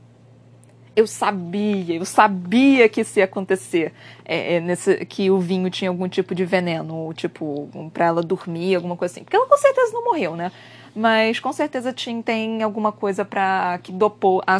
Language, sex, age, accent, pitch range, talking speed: Portuguese, female, 20-39, Brazilian, 185-245 Hz, 190 wpm